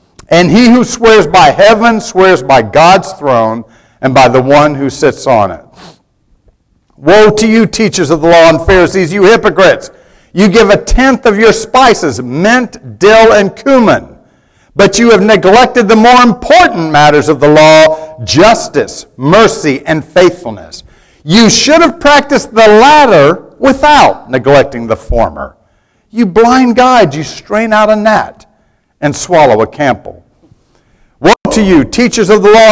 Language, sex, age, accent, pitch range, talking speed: English, male, 50-69, American, 150-225 Hz, 155 wpm